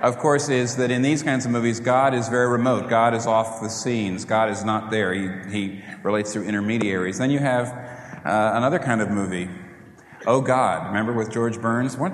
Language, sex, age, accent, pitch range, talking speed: English, male, 40-59, American, 105-125 Hz, 210 wpm